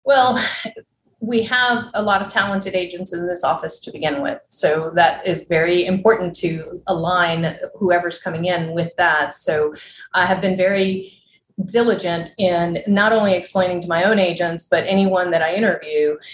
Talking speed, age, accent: 165 wpm, 30-49, American